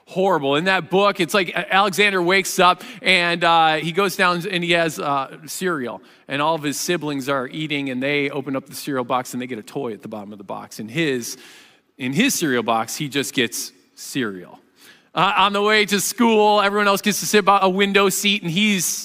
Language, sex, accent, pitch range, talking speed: English, male, American, 145-210 Hz, 225 wpm